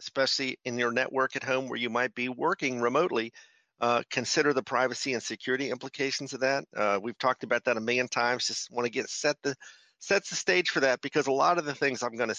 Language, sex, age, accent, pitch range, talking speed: English, male, 50-69, American, 115-135 Hz, 230 wpm